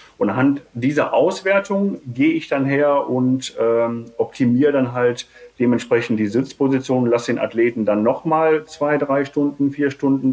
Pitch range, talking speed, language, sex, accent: 110-135 Hz, 150 wpm, German, male, German